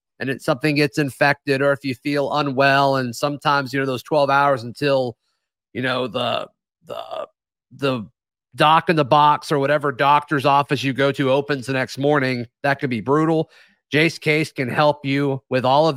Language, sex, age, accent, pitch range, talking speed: English, male, 30-49, American, 130-155 Hz, 190 wpm